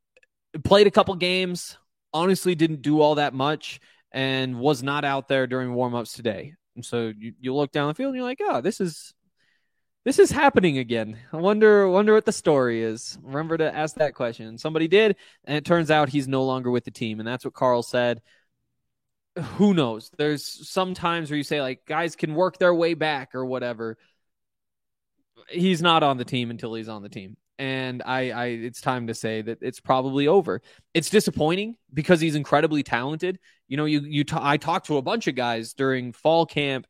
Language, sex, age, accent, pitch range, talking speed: English, male, 20-39, American, 125-160 Hz, 205 wpm